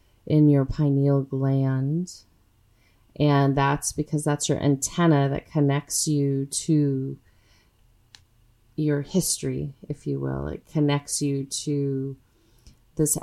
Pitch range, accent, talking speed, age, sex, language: 135-155 Hz, American, 110 wpm, 30-49, female, English